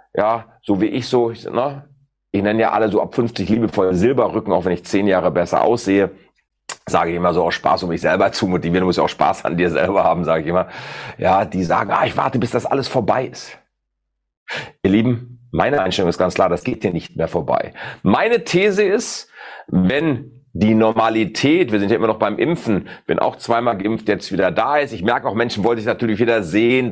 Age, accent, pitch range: 40-59, German, 105-130 Hz